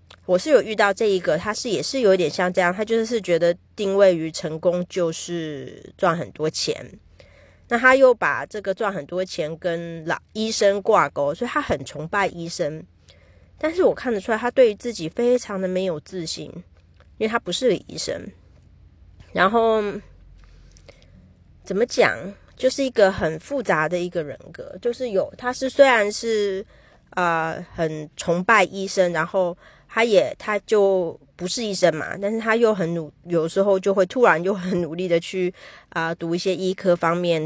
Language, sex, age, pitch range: Chinese, female, 30-49, 165-215 Hz